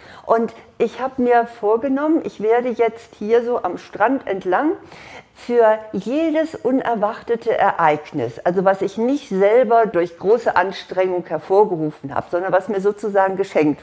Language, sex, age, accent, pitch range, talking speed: German, female, 50-69, German, 185-230 Hz, 140 wpm